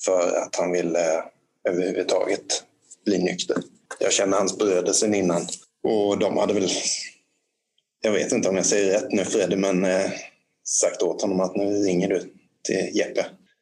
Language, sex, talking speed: Swedish, male, 165 wpm